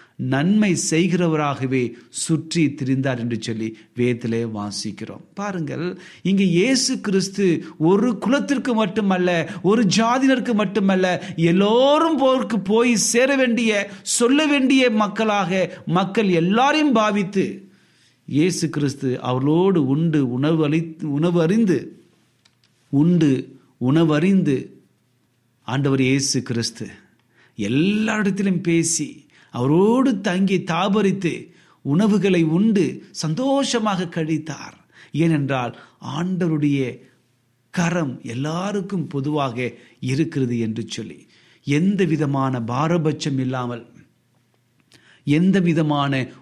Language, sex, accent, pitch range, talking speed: Tamil, male, native, 130-195 Hz, 80 wpm